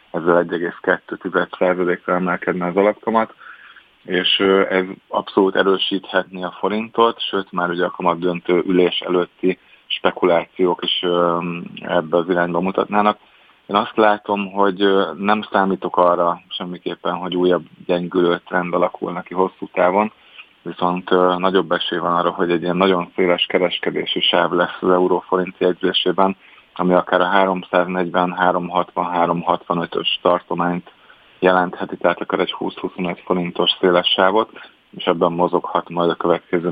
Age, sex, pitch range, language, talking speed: 30-49, male, 90-100 Hz, Hungarian, 130 wpm